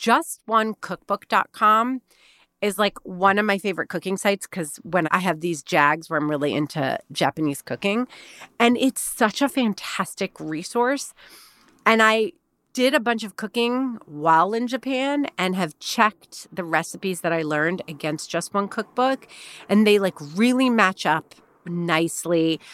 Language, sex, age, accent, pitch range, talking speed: English, female, 30-49, American, 165-225 Hz, 150 wpm